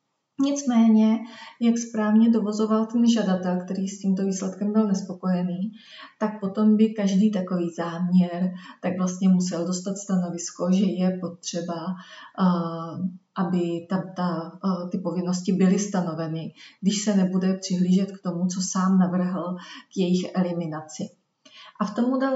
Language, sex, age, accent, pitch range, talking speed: Czech, female, 30-49, native, 180-215 Hz, 120 wpm